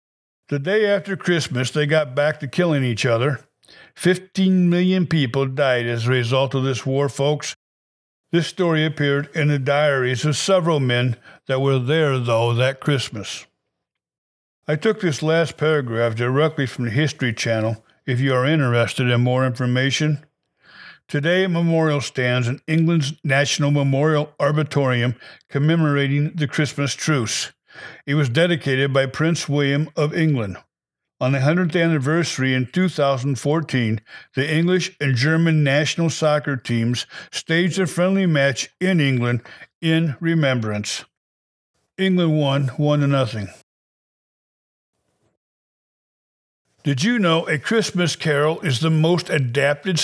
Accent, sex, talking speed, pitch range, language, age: American, male, 130 wpm, 130-160 Hz, English, 60-79